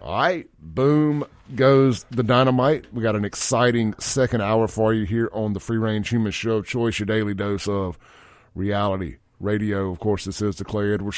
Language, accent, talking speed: English, American, 190 wpm